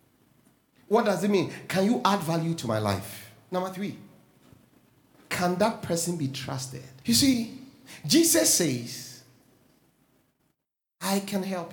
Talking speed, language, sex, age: 130 wpm, English, male, 40-59